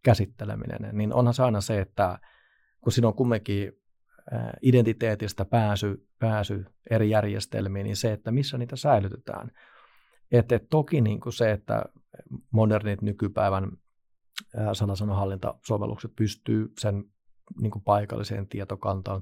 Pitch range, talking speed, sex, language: 100-120 Hz, 120 wpm, male, Finnish